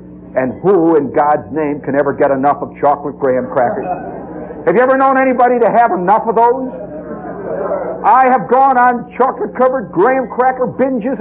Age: 60-79